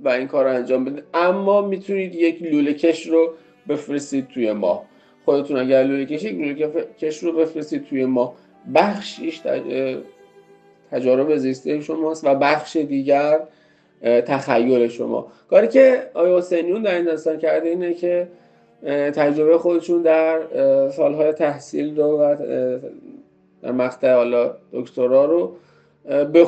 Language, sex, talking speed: Persian, male, 120 wpm